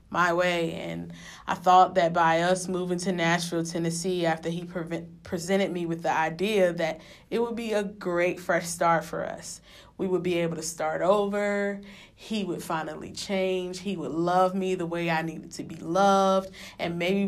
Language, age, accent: English, 20-39, American